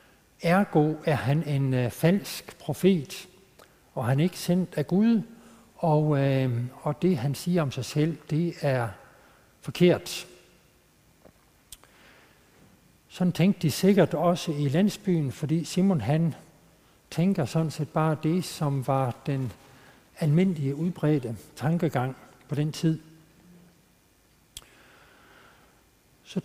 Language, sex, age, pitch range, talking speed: Danish, male, 60-79, 140-180 Hz, 115 wpm